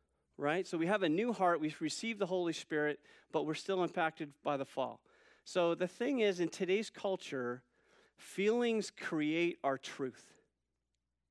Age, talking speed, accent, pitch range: 40-59, 160 wpm, American, 140-190 Hz